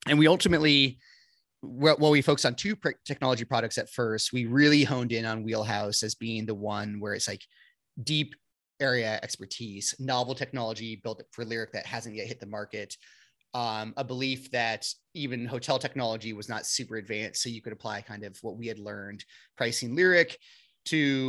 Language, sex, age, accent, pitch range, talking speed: English, male, 30-49, American, 110-140 Hz, 180 wpm